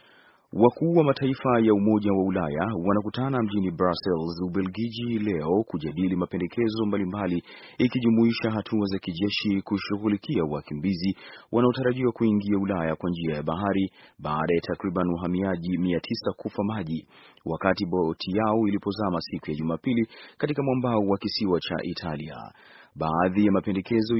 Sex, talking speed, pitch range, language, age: male, 125 wpm, 90-110 Hz, Swahili, 30-49